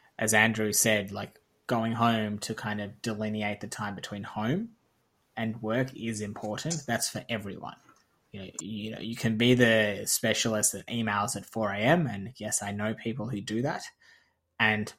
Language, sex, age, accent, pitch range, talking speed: English, male, 20-39, Australian, 105-115 Hz, 170 wpm